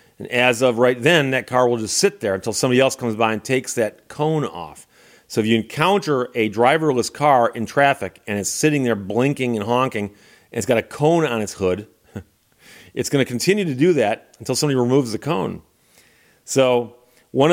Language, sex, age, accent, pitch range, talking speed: English, male, 40-59, American, 115-145 Hz, 200 wpm